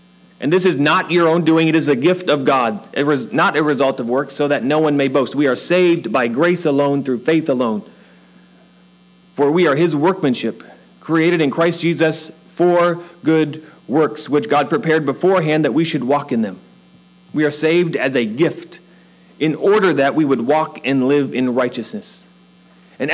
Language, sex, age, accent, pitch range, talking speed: English, male, 30-49, American, 125-175 Hz, 185 wpm